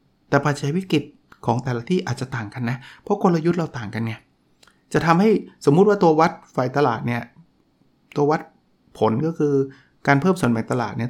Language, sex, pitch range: Thai, male, 130-160 Hz